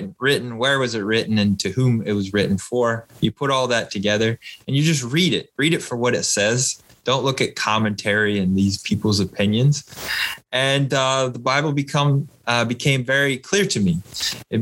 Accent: American